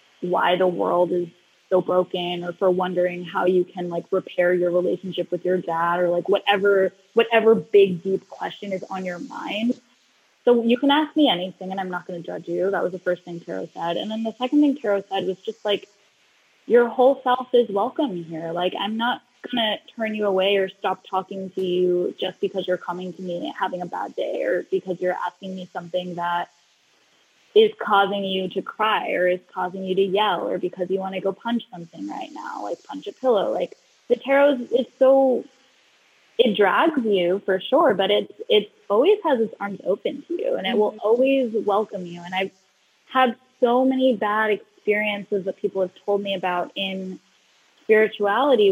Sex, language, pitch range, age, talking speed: female, English, 180-230 Hz, 10-29, 200 wpm